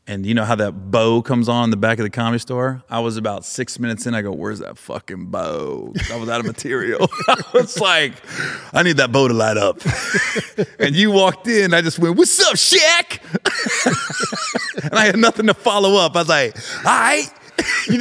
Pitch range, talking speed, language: 120-175 Hz, 215 wpm, English